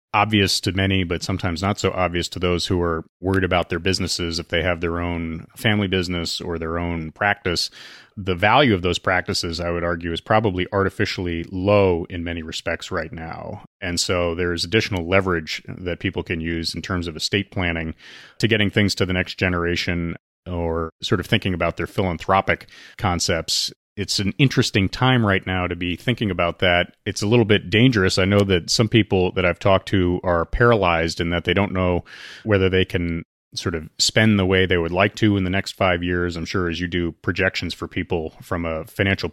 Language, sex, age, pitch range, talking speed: English, male, 30-49, 85-100 Hz, 205 wpm